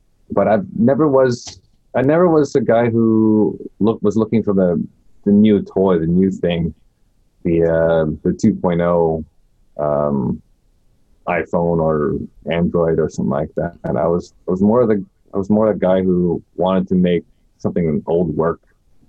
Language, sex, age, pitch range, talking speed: English, male, 30-49, 85-110 Hz, 170 wpm